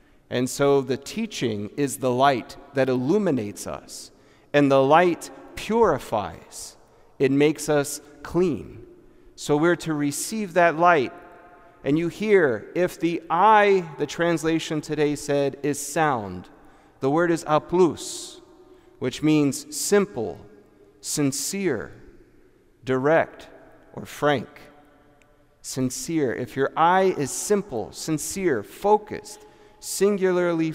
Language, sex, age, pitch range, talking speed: English, male, 40-59, 135-170 Hz, 110 wpm